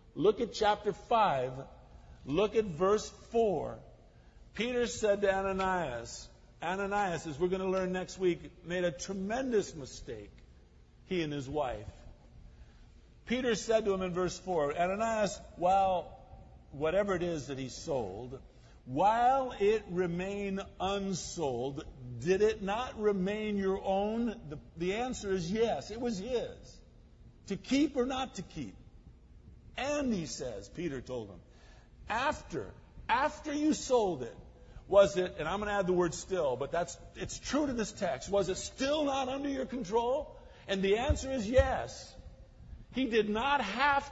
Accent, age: American, 50-69